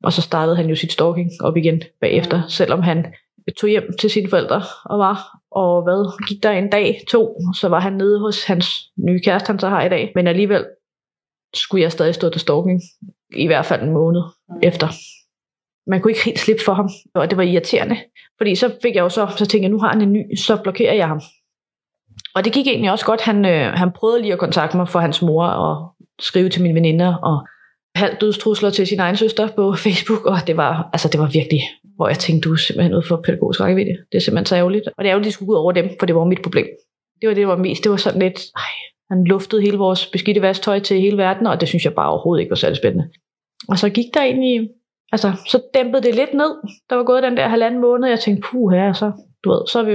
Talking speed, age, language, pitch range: 245 wpm, 20-39, Danish, 175-215 Hz